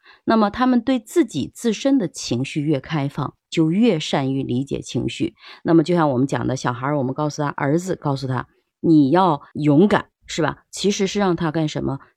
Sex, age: female, 30-49